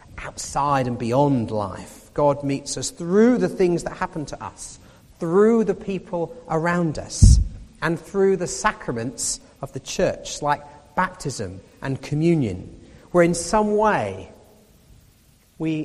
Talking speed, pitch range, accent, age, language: 135 wpm, 120-180 Hz, British, 40-59, English